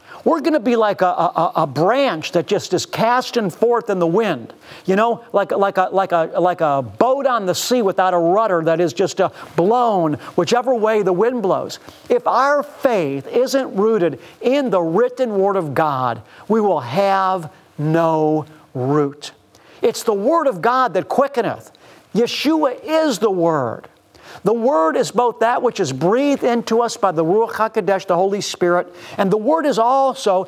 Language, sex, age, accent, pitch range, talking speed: English, male, 50-69, American, 180-245 Hz, 180 wpm